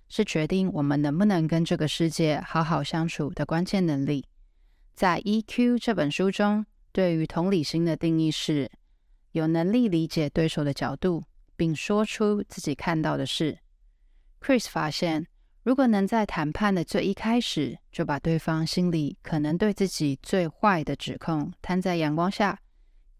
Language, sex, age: Chinese, female, 20-39